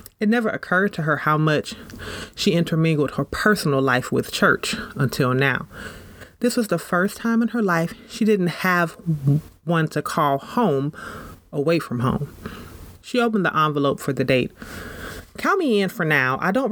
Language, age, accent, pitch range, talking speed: English, 30-49, American, 150-230 Hz, 170 wpm